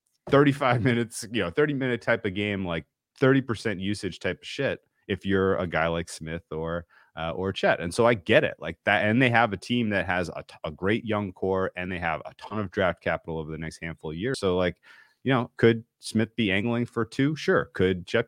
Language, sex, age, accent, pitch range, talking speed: English, male, 30-49, American, 90-120 Hz, 235 wpm